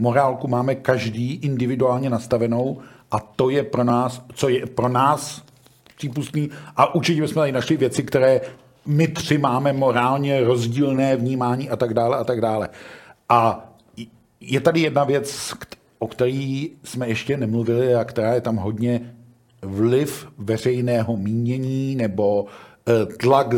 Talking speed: 135 wpm